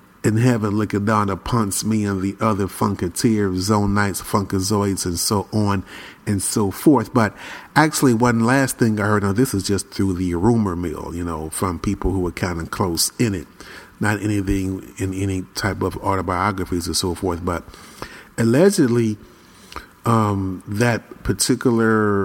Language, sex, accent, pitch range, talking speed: English, male, American, 95-115 Hz, 160 wpm